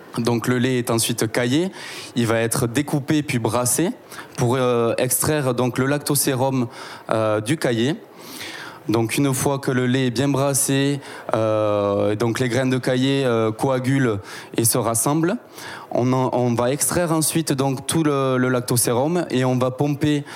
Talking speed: 155 wpm